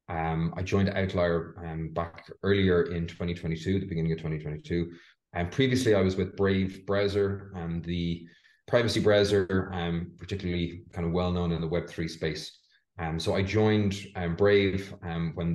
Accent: Irish